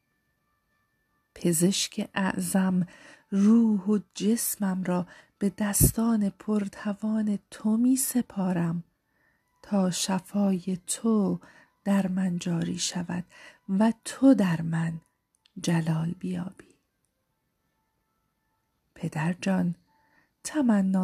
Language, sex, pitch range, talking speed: Persian, female, 175-210 Hz, 80 wpm